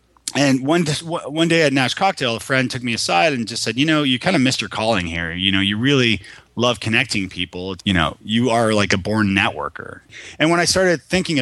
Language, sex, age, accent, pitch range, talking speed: English, male, 30-49, American, 105-130 Hz, 230 wpm